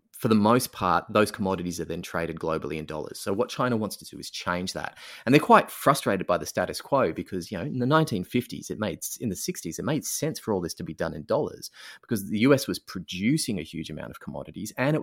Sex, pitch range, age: male, 95-125 Hz, 30-49